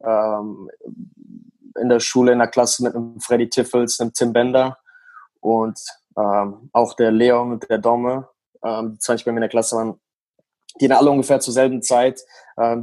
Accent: German